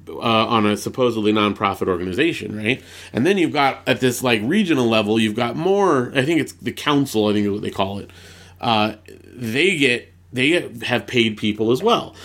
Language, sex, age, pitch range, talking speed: English, male, 30-49, 105-140 Hz, 195 wpm